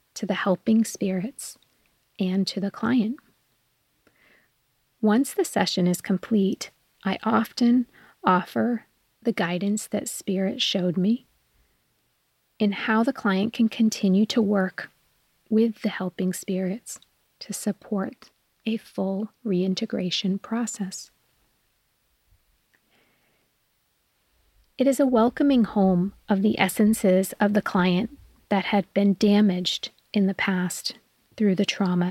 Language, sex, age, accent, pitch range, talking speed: English, female, 30-49, American, 190-225 Hz, 115 wpm